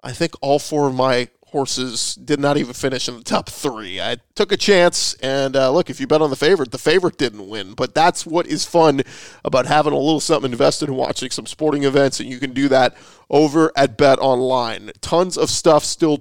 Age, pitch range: 40-59, 135-165 Hz